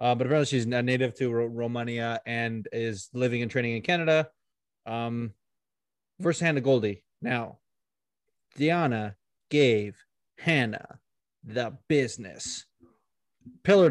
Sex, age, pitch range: male, 20-39, 120-145 Hz